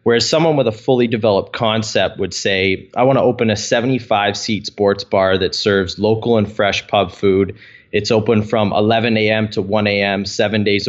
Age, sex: 20-39, male